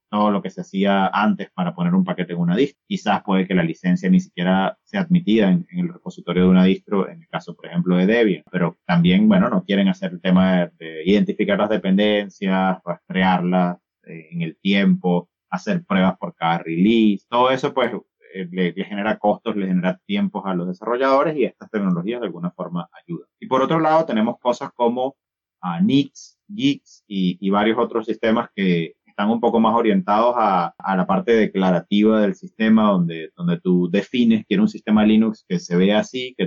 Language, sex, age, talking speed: Spanish, male, 30-49, 195 wpm